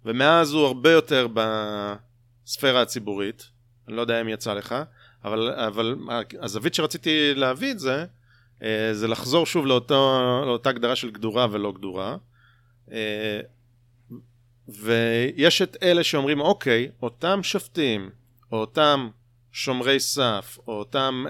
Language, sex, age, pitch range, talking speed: Hebrew, male, 30-49, 115-135 Hz, 120 wpm